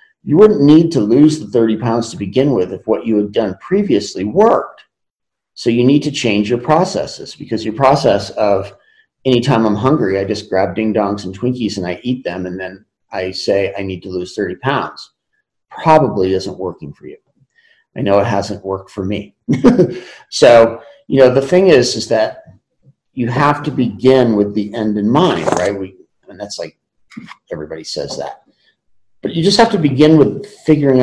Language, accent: English, American